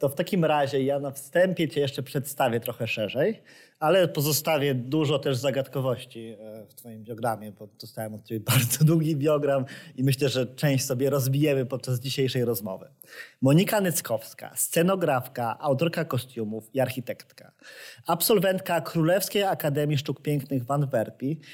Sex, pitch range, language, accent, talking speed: male, 130-165 Hz, Polish, native, 140 wpm